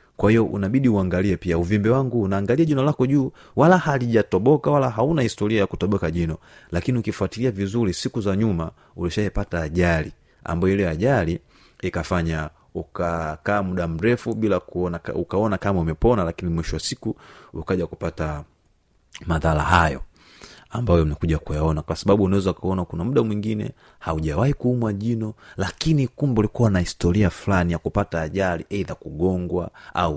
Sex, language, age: male, Swahili, 30-49